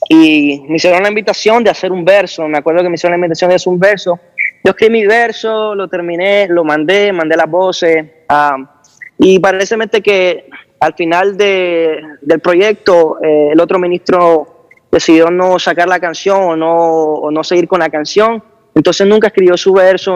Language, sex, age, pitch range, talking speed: Spanish, male, 20-39, 165-200 Hz, 185 wpm